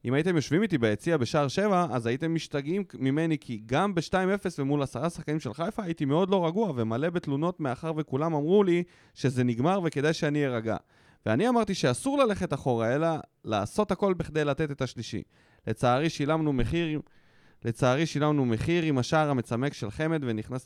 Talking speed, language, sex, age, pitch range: 170 wpm, Hebrew, male, 20-39, 125-165 Hz